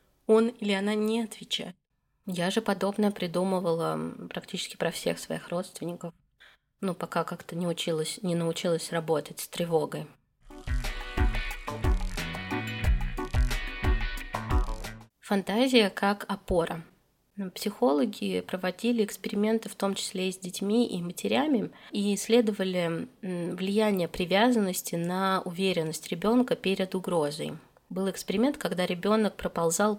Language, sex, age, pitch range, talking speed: Russian, female, 20-39, 170-215 Hz, 105 wpm